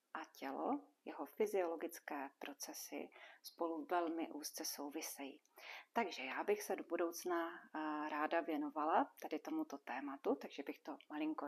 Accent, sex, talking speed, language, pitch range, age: native, female, 125 wpm, Czech, 165-215 Hz, 40-59